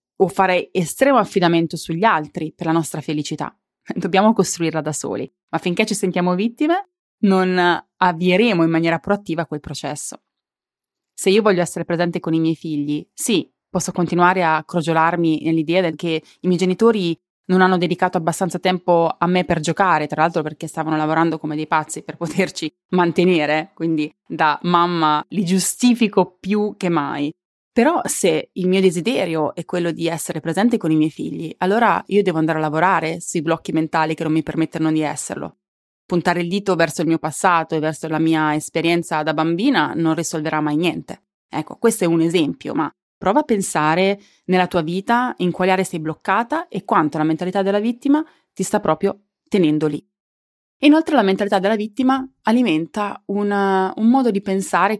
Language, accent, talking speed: Italian, native, 175 wpm